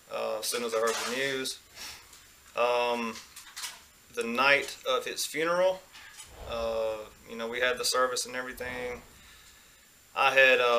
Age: 30-49